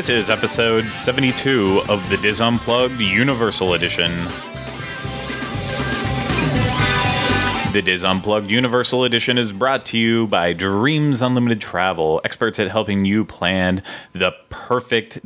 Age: 30-49